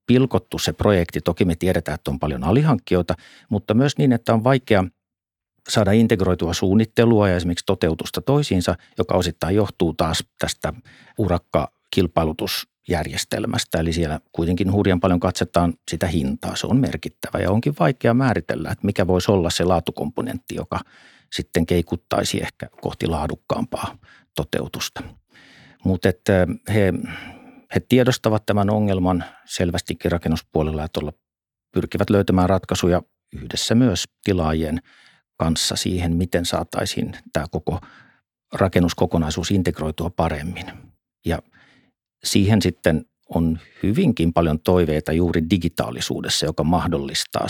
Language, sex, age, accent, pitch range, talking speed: Finnish, male, 50-69, native, 85-105 Hz, 115 wpm